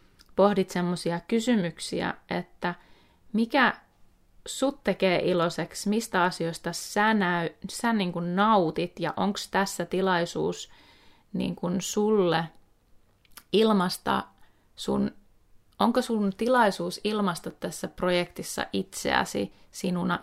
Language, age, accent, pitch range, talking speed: Finnish, 20-39, native, 170-200 Hz, 100 wpm